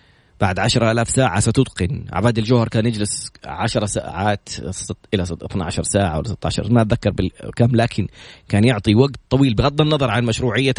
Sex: male